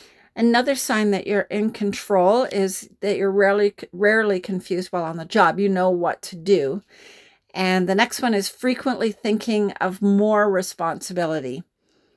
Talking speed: 155 wpm